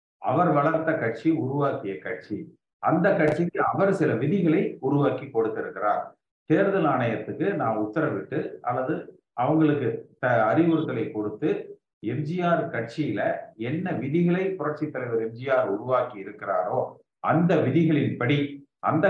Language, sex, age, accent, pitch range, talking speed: Tamil, male, 50-69, native, 135-175 Hz, 100 wpm